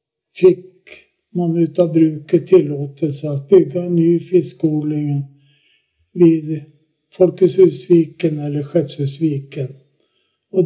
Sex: male